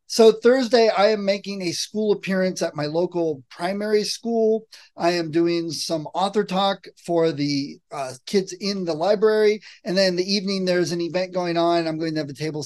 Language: English